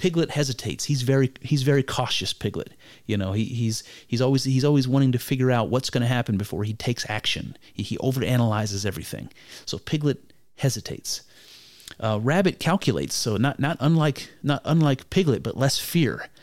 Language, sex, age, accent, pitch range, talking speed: English, male, 30-49, American, 110-135 Hz, 175 wpm